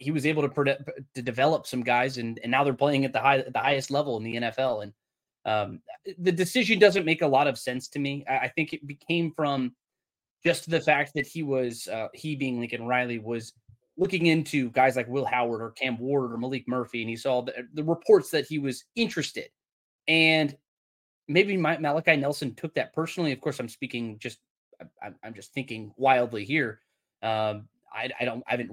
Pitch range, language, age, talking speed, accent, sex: 125-160 Hz, English, 20-39, 205 wpm, American, male